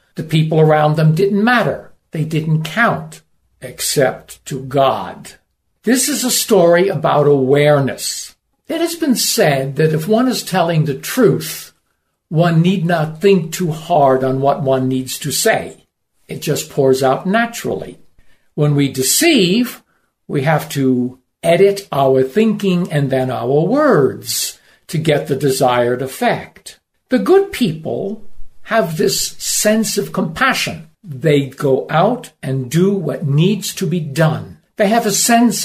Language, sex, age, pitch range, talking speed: Ukrainian, male, 60-79, 140-200 Hz, 145 wpm